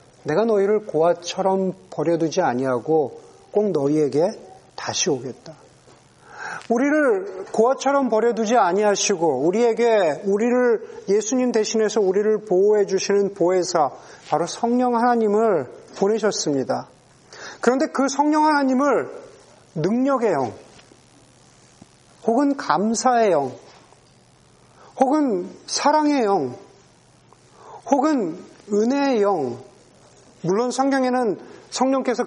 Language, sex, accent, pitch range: Korean, male, native, 200-265 Hz